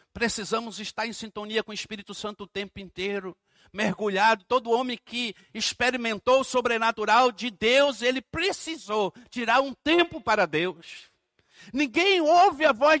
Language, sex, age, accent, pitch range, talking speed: Portuguese, male, 60-79, Brazilian, 235-315 Hz, 145 wpm